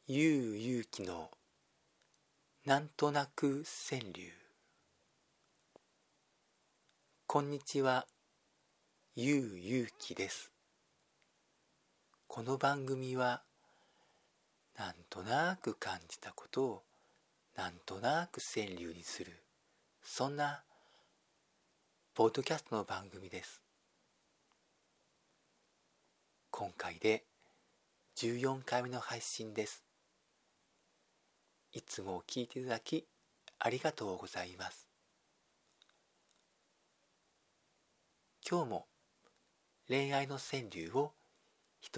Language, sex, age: Japanese, male, 40-59